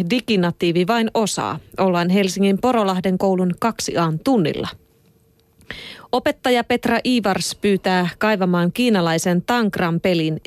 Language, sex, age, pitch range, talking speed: Finnish, female, 30-49, 170-225 Hz, 90 wpm